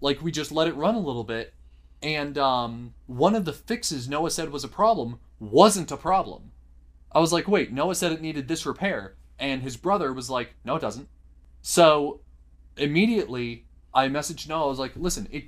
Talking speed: 200 wpm